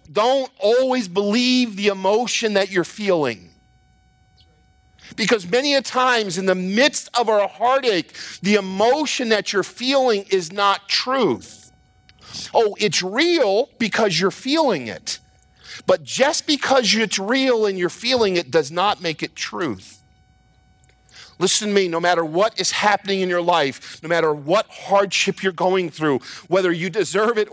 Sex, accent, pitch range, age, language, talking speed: male, American, 170-225 Hz, 50-69, English, 150 wpm